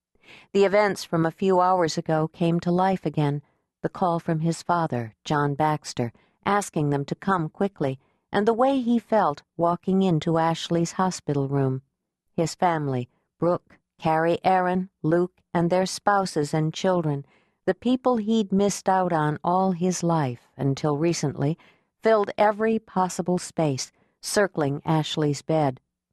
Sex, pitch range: female, 150-195 Hz